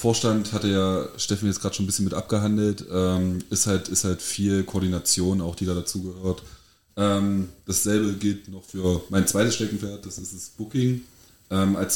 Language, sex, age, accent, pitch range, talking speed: English, male, 30-49, German, 90-105 Hz, 170 wpm